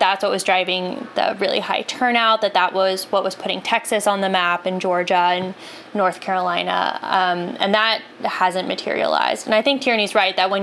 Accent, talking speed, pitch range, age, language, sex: American, 200 wpm, 185-210 Hz, 20-39, English, female